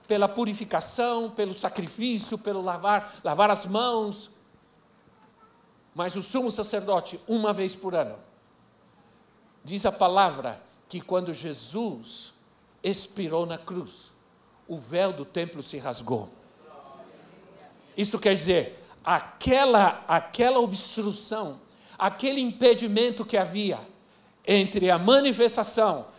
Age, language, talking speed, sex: 60-79, Portuguese, 105 wpm, male